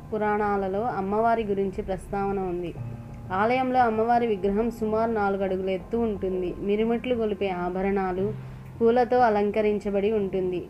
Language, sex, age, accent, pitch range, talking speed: Telugu, female, 20-39, native, 190-230 Hz, 100 wpm